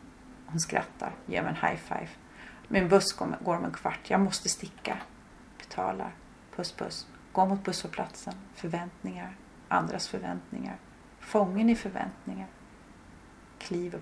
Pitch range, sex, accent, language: 185-215 Hz, female, native, Swedish